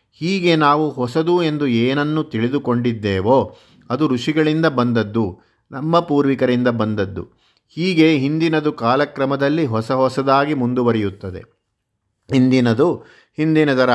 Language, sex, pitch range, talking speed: Kannada, male, 115-140 Hz, 85 wpm